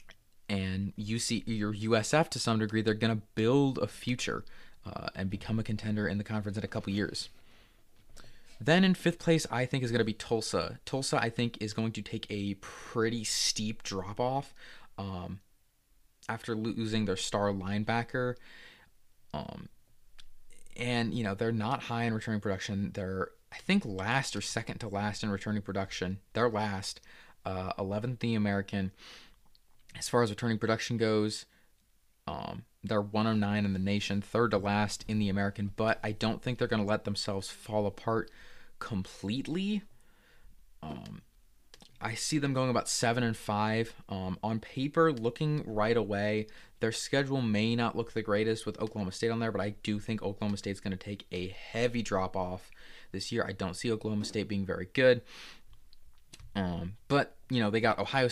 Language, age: English, 20-39